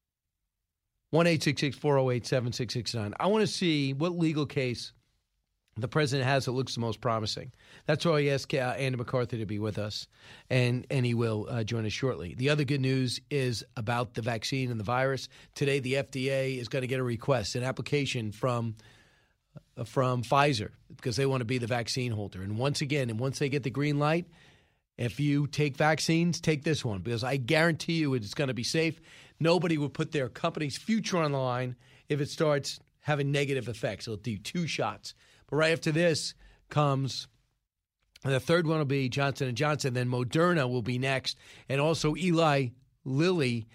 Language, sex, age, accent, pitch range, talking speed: English, male, 40-59, American, 125-155 Hz, 185 wpm